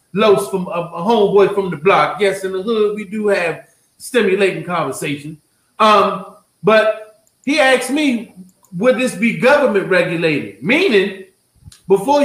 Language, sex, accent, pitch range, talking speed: English, male, American, 185-225 Hz, 135 wpm